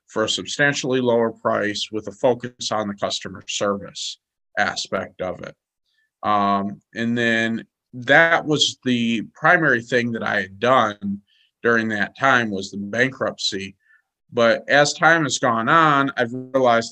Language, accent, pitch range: English, American, 105-130 Hz